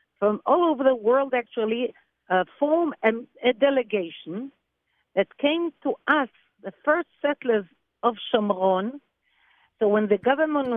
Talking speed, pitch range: 135 wpm, 205-275 Hz